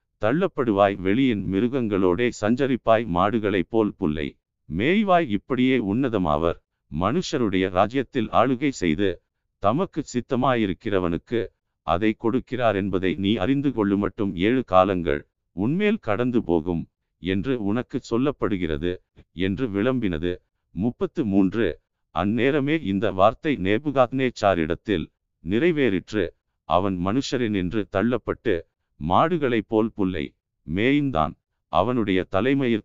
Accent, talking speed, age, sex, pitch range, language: native, 85 wpm, 50-69, male, 95-130 Hz, Tamil